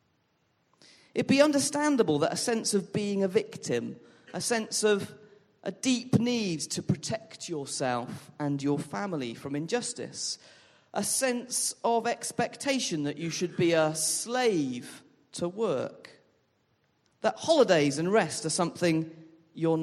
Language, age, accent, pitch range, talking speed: English, 40-59, British, 160-235 Hz, 130 wpm